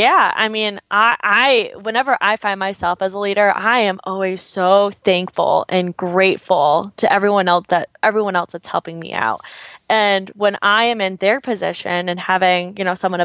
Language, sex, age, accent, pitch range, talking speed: English, female, 20-39, American, 180-205 Hz, 185 wpm